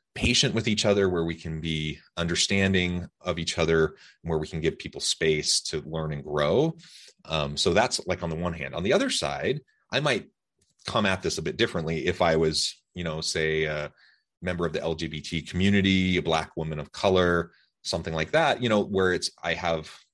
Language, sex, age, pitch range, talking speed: English, male, 30-49, 80-95 Hz, 205 wpm